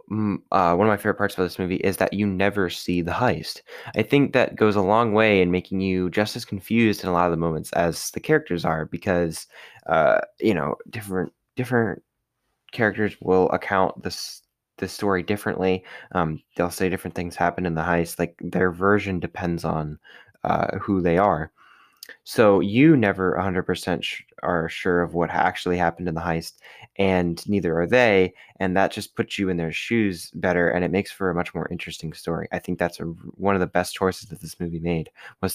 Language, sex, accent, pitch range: English, male, American, 85-100 Hz